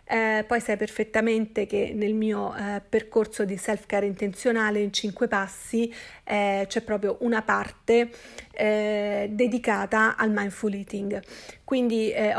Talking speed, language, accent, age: 130 wpm, Italian, native, 40-59